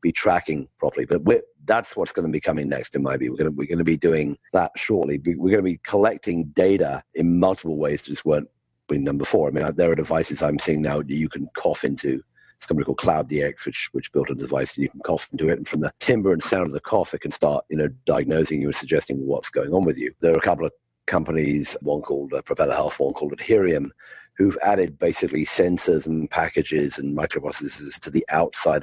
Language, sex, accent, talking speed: English, male, British, 245 wpm